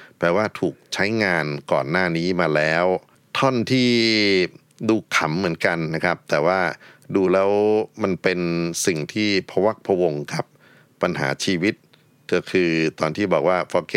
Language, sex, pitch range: Thai, male, 85-105 Hz